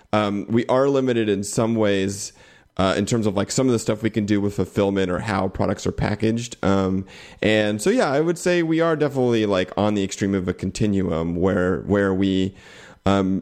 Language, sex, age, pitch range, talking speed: English, male, 30-49, 95-110 Hz, 210 wpm